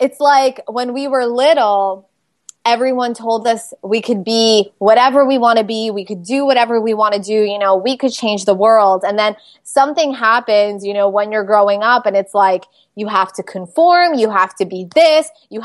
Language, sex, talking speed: English, female, 210 wpm